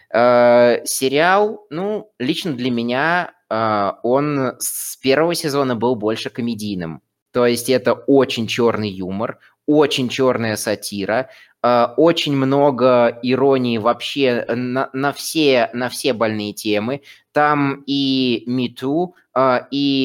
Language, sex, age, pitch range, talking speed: Russian, male, 20-39, 115-160 Hz, 120 wpm